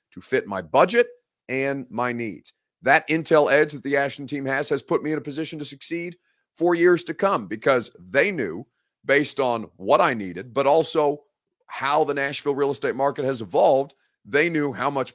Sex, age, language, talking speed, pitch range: male, 30-49, English, 195 wpm, 115-150 Hz